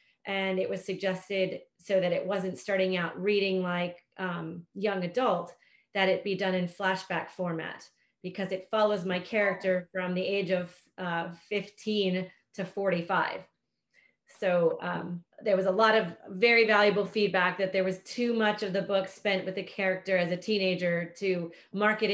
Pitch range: 185-210 Hz